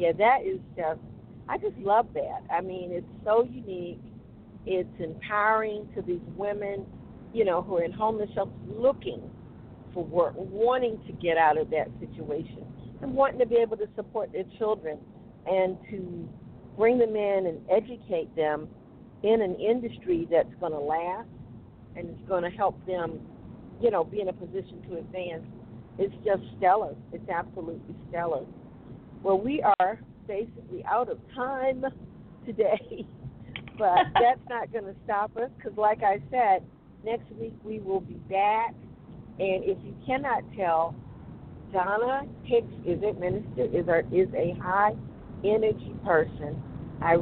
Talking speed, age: 150 wpm, 50-69